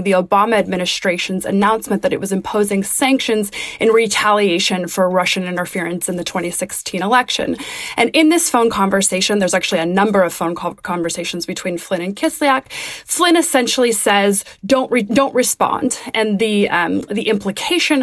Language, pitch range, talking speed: English, 185-235 Hz, 145 wpm